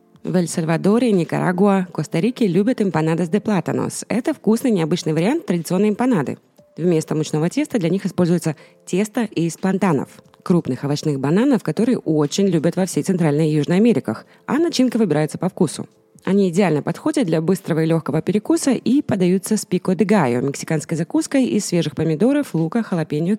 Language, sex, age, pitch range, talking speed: Russian, female, 20-39, 155-210 Hz, 155 wpm